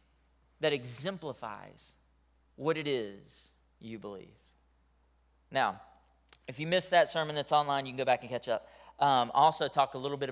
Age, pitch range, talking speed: 30-49, 135-195 Hz, 165 wpm